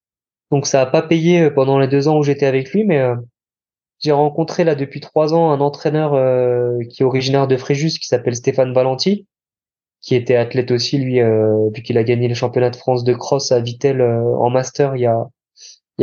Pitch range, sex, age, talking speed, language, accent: 125-145 Hz, male, 20-39, 215 wpm, French, French